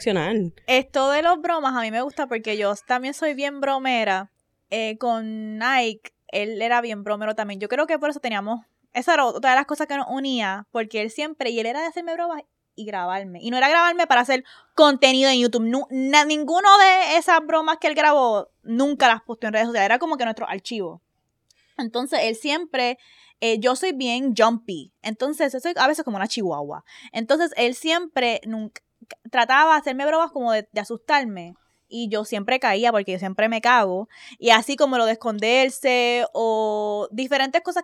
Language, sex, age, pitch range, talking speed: Spanish, female, 20-39, 220-295 Hz, 195 wpm